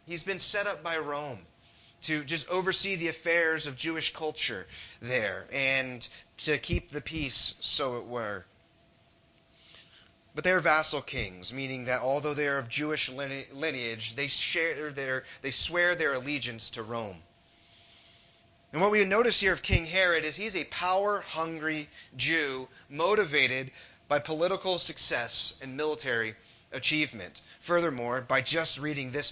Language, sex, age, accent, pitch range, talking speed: English, male, 30-49, American, 130-185 Hz, 145 wpm